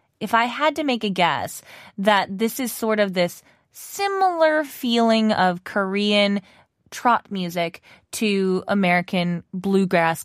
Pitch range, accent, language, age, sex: 195-260 Hz, American, Korean, 20-39, female